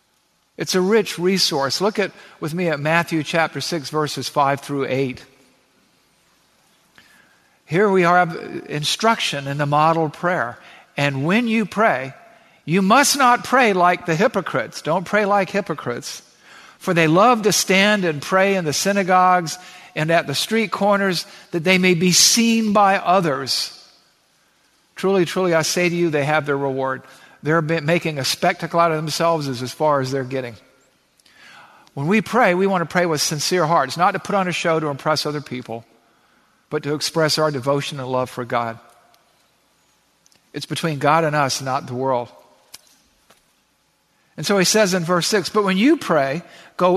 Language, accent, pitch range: English, American, 145-190 Hz